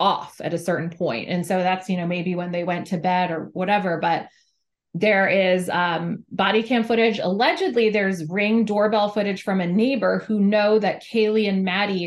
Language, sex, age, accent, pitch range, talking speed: English, female, 20-39, American, 175-210 Hz, 200 wpm